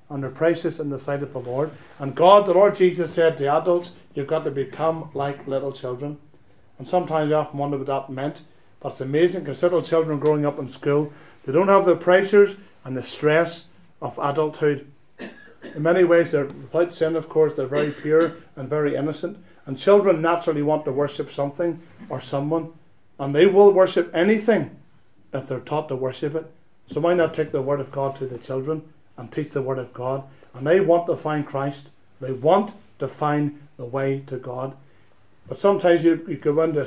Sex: male